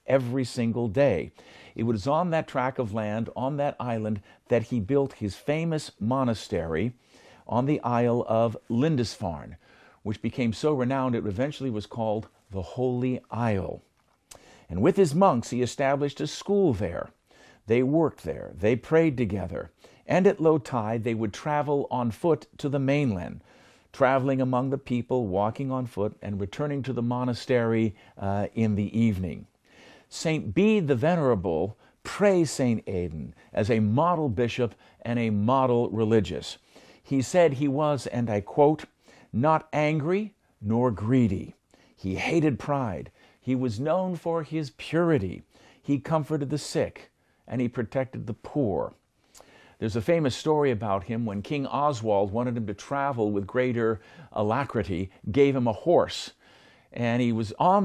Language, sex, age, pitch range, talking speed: English, male, 50-69, 110-145 Hz, 150 wpm